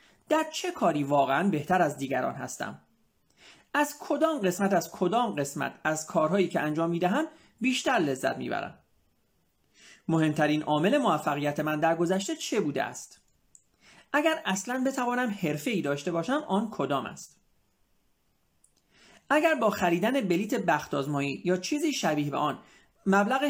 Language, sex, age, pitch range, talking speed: Persian, male, 40-59, 155-245 Hz, 130 wpm